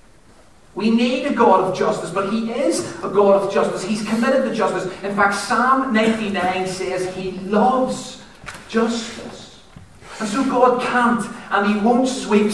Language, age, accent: English, 40-59, British